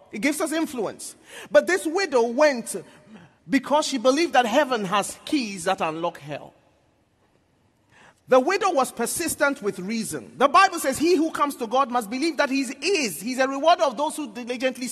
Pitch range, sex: 190-285 Hz, male